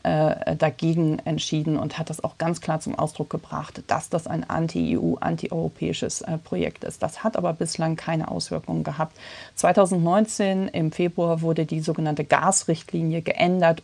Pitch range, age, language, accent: 160-185 Hz, 40-59, German, German